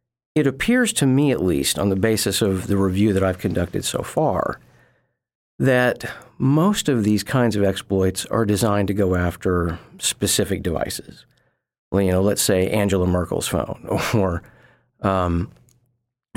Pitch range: 95-120 Hz